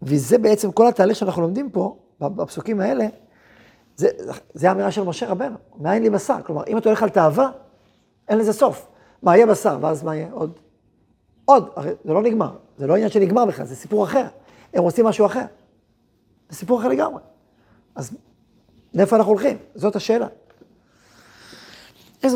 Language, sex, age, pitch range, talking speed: Hebrew, male, 40-59, 165-215 Hz, 165 wpm